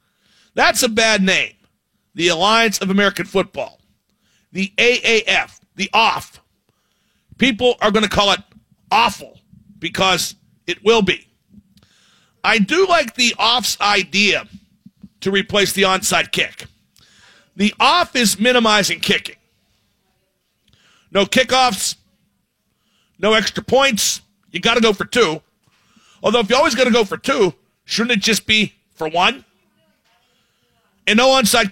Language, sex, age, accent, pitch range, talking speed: English, male, 50-69, American, 190-230 Hz, 130 wpm